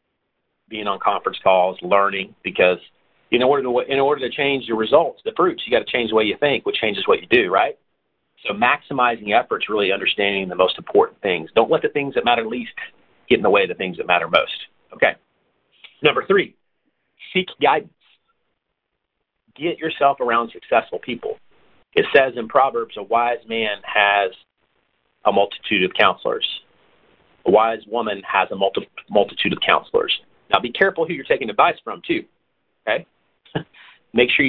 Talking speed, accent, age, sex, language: 175 wpm, American, 40-59, male, English